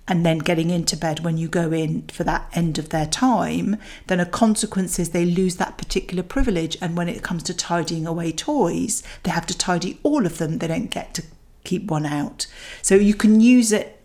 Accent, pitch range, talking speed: British, 165-205 Hz, 220 wpm